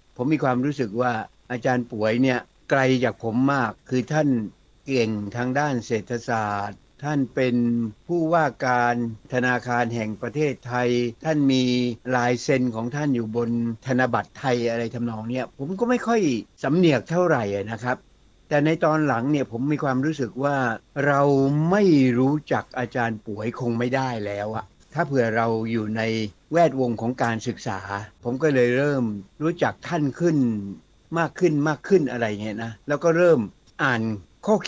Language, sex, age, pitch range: Thai, male, 60-79, 115-145 Hz